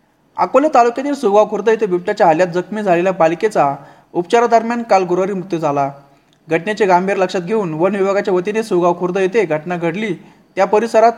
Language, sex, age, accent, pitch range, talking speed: Marathi, male, 20-39, native, 170-220 Hz, 145 wpm